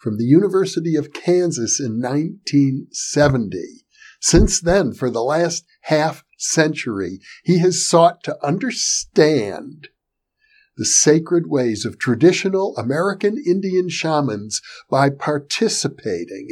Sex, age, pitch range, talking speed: male, 60-79, 125-180 Hz, 105 wpm